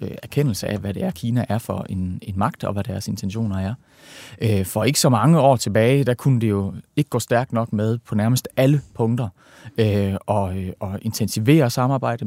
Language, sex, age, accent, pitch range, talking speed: Danish, male, 30-49, native, 105-130 Hz, 180 wpm